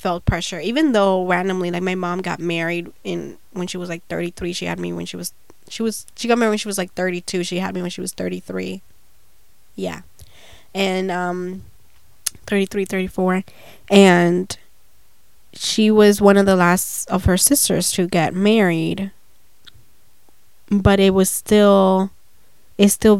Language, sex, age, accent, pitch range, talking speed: English, female, 20-39, American, 180-200 Hz, 165 wpm